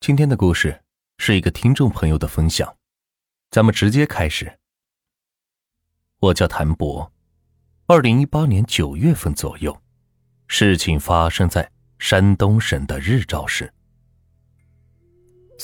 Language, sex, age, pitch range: Chinese, male, 30-49, 80-120 Hz